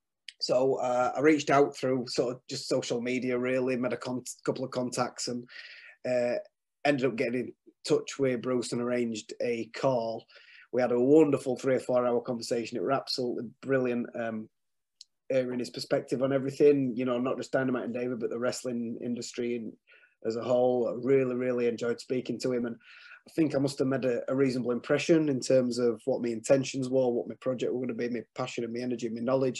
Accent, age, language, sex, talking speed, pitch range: British, 20-39, English, male, 210 wpm, 120-135 Hz